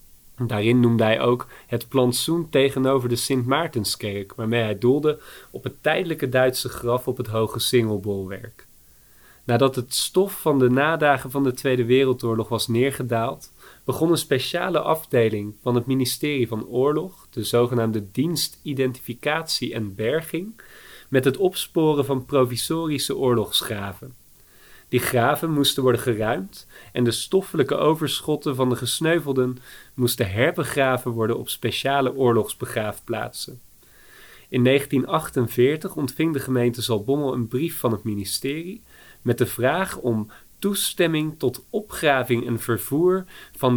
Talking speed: 130 wpm